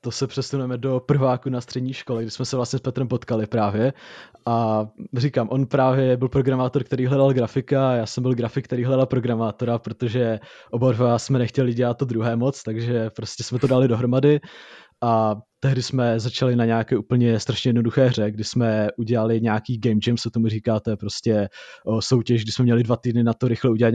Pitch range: 115-130 Hz